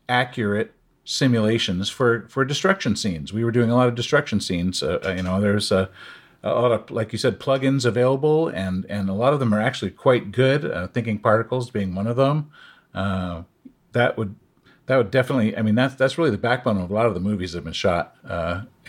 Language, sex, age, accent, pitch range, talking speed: English, male, 50-69, American, 95-125 Hz, 215 wpm